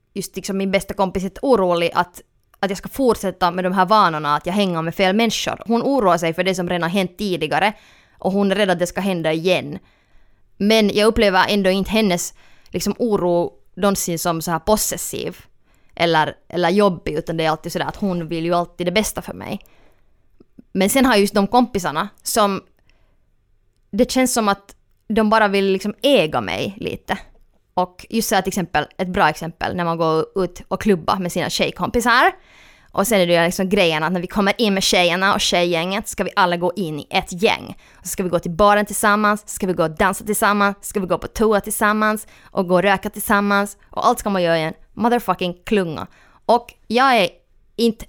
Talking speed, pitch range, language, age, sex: 205 wpm, 175-210 Hz, Swedish, 20-39, female